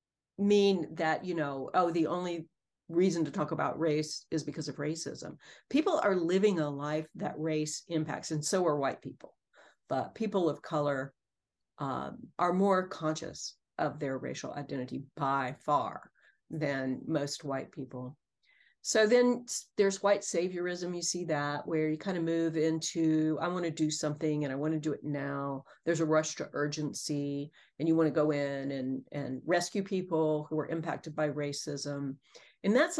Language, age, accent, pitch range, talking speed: English, 50-69, American, 150-185 Hz, 175 wpm